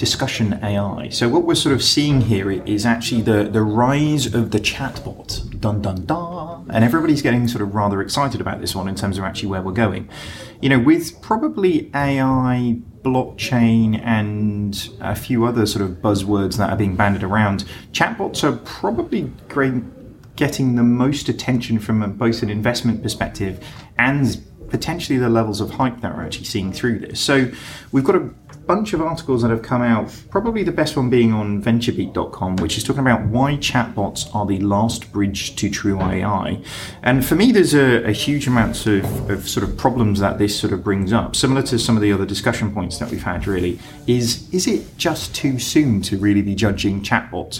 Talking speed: 190 wpm